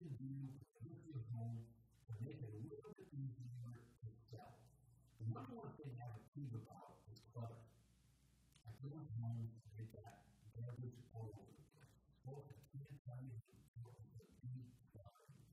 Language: English